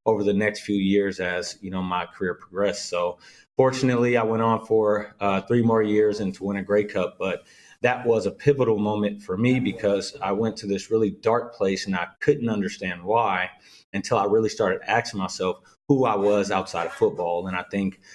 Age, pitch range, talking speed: 30-49, 100-115 Hz, 210 wpm